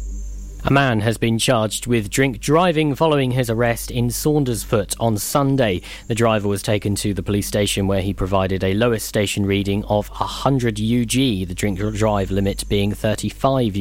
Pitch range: 105-140 Hz